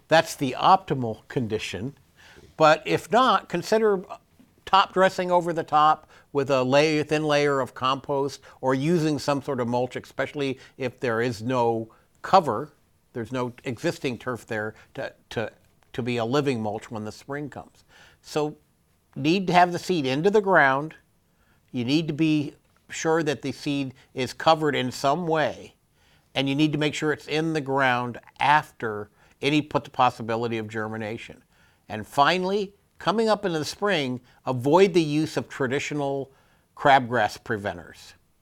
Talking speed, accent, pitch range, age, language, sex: 155 wpm, American, 115-150 Hz, 60-79, English, male